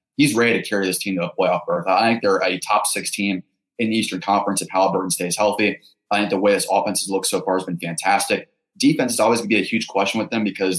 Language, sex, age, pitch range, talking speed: English, male, 20-39, 95-105 Hz, 275 wpm